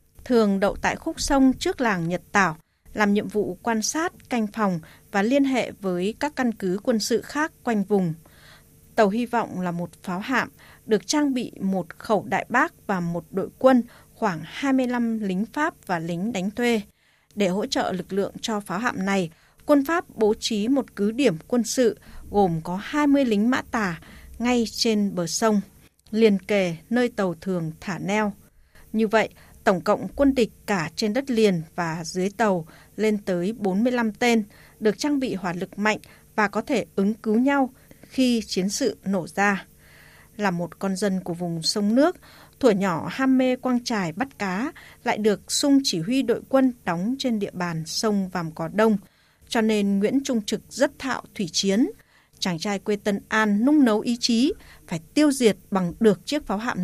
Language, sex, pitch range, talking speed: Vietnamese, female, 190-245 Hz, 190 wpm